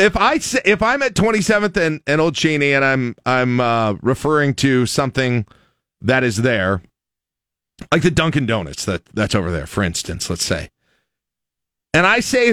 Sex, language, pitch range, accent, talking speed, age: male, English, 100-145 Hz, American, 170 wpm, 40-59